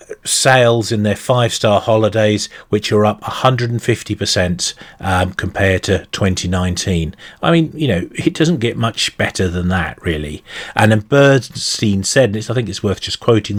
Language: English